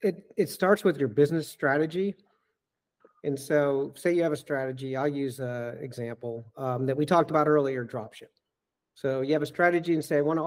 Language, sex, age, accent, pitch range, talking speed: English, male, 50-69, American, 130-155 Hz, 200 wpm